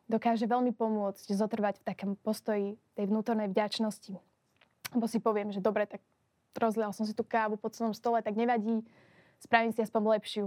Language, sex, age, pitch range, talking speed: Slovak, female, 20-39, 210-235 Hz, 180 wpm